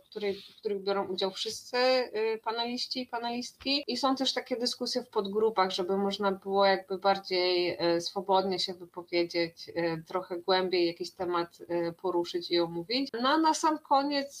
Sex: female